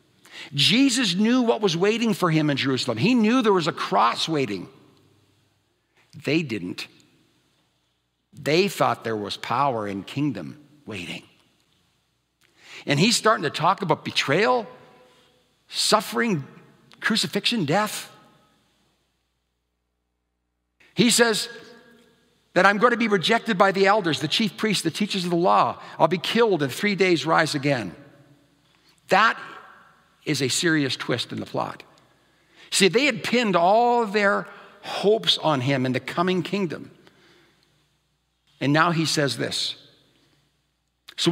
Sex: male